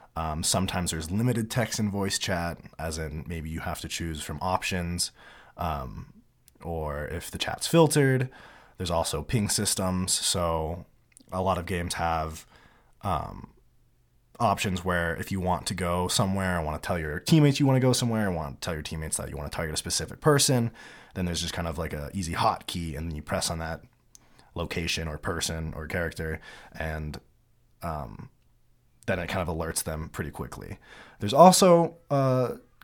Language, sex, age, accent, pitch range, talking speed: English, male, 20-39, American, 80-100 Hz, 185 wpm